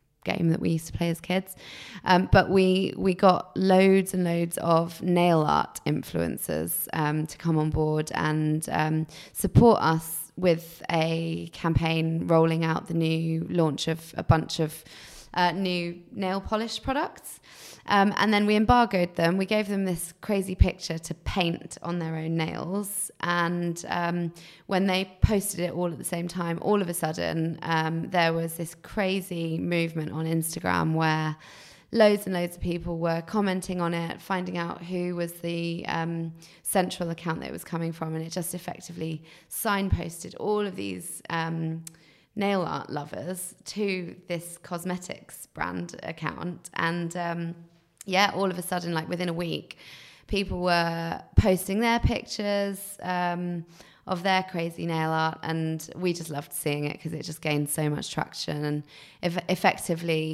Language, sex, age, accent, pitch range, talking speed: English, female, 20-39, British, 160-185 Hz, 165 wpm